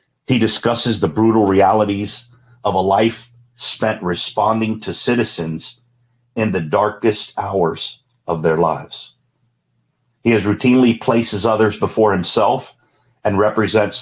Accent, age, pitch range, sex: American, 50-69, 100-120 Hz, male